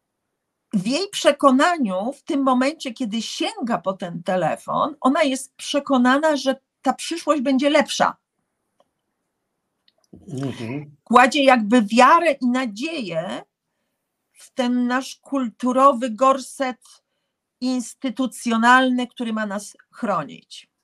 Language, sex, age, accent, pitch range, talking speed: Polish, female, 40-59, native, 235-310 Hz, 100 wpm